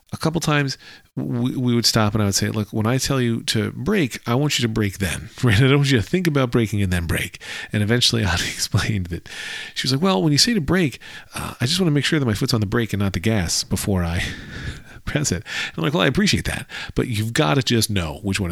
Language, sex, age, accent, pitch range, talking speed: English, male, 40-59, American, 90-120 Hz, 270 wpm